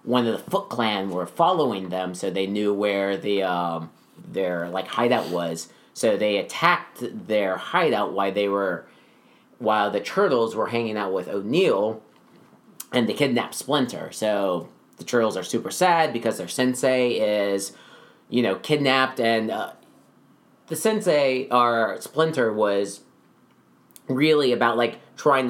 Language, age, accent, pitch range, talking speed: English, 30-49, American, 95-120 Hz, 145 wpm